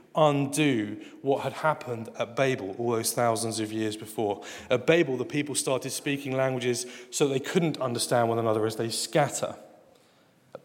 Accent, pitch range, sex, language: British, 120-150 Hz, male, English